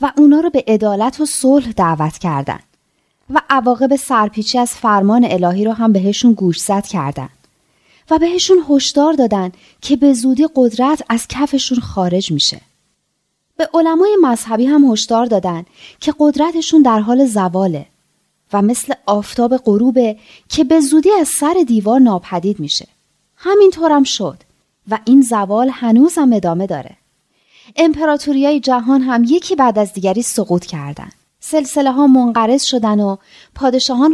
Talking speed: 140 wpm